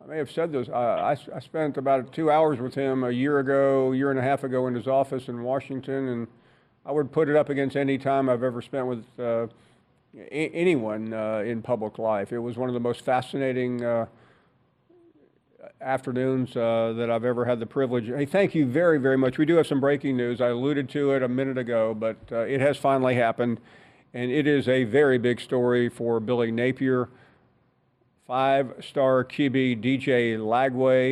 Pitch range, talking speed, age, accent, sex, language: 120-135 Hz, 195 wpm, 50-69, American, male, English